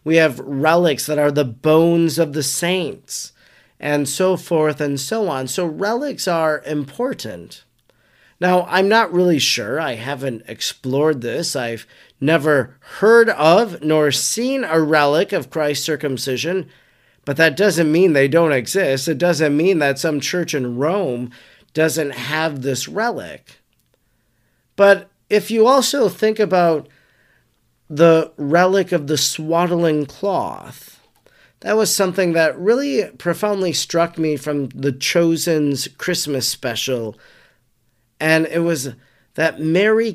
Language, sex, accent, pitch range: English, male, American, 140-175 Hz